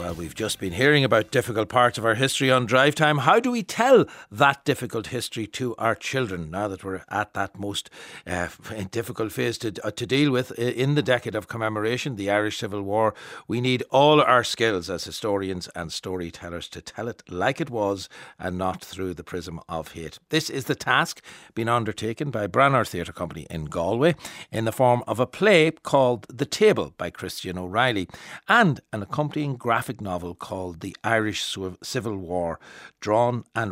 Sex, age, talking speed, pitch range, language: male, 60-79, 185 wpm, 95-135 Hz, English